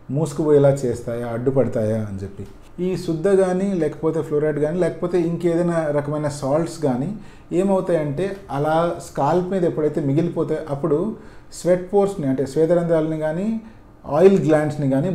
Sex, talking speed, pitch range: male, 130 wpm, 135-180 Hz